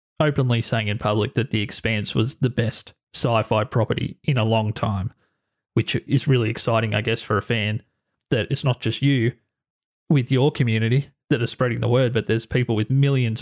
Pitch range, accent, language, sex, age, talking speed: 110-135 Hz, Australian, English, male, 20-39, 190 wpm